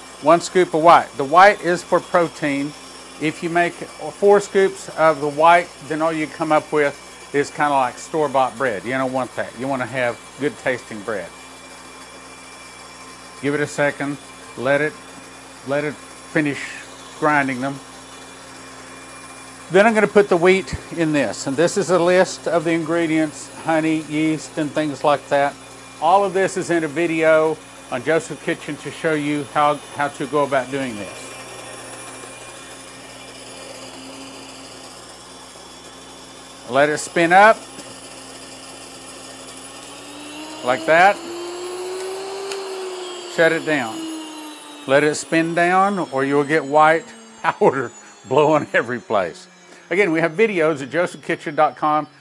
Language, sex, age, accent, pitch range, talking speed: English, male, 50-69, American, 140-175 Hz, 140 wpm